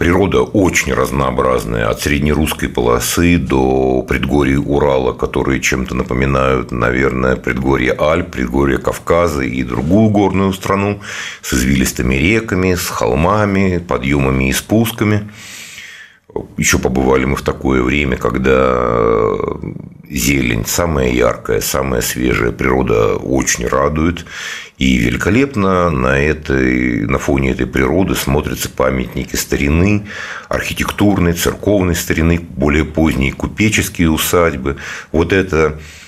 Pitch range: 65-85 Hz